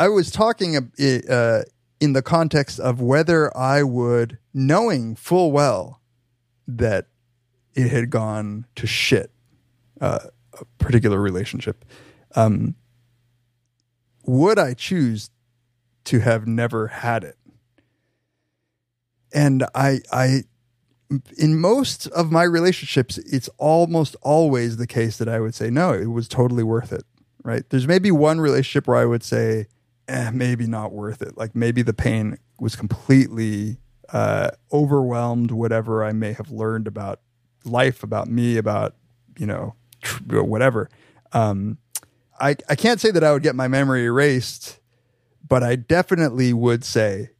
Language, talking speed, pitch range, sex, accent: English, 135 wpm, 115-135 Hz, male, American